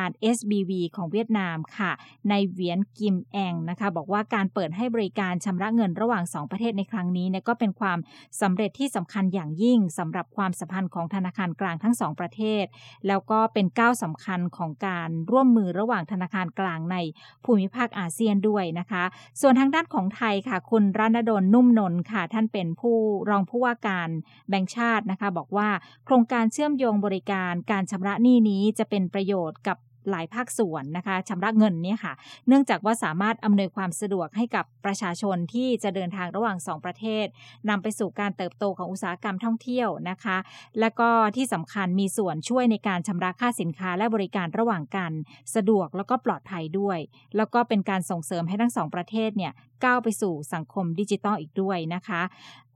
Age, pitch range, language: 20-39, 180-220 Hz, English